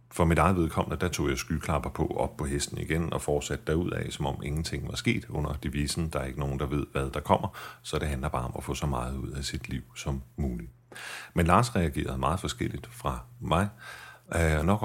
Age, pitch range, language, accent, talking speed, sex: 40-59, 70-85 Hz, Danish, native, 220 wpm, male